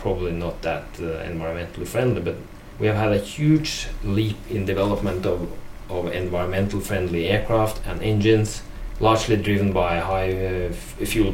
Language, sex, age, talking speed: English, male, 30-49, 155 wpm